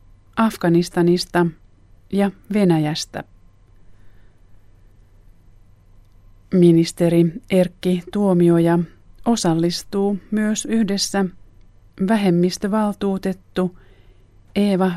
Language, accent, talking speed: Finnish, native, 45 wpm